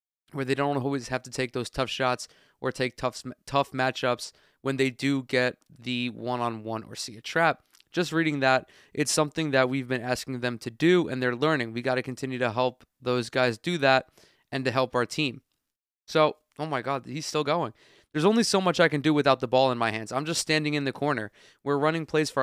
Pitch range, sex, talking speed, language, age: 125-150 Hz, male, 225 wpm, English, 20-39